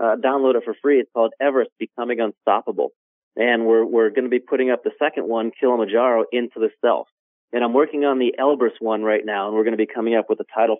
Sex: male